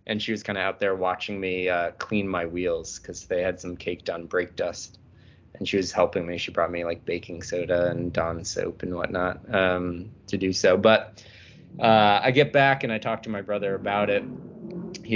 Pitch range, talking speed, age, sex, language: 90-110 Hz, 220 wpm, 20-39, male, English